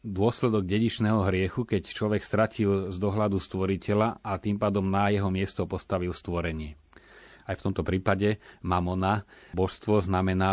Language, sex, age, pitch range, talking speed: Slovak, male, 30-49, 95-110 Hz, 135 wpm